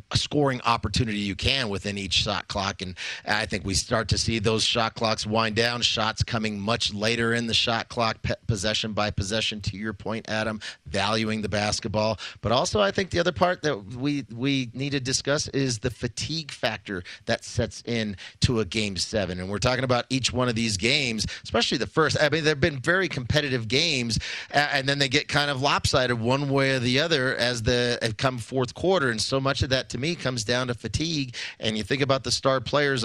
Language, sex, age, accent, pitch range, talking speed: English, male, 30-49, American, 110-135 Hz, 215 wpm